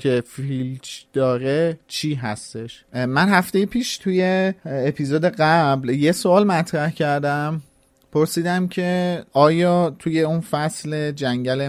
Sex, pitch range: male, 130-170 Hz